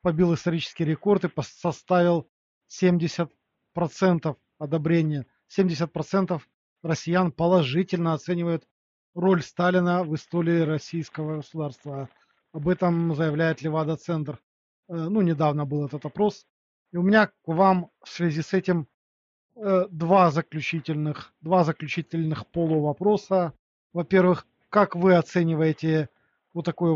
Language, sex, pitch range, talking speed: Russian, male, 155-180 Hz, 105 wpm